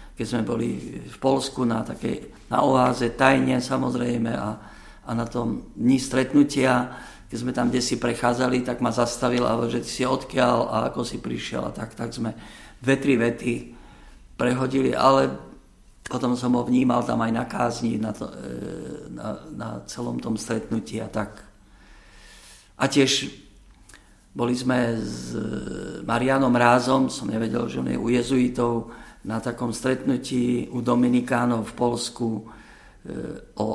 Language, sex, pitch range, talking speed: Slovak, male, 110-125 Hz, 140 wpm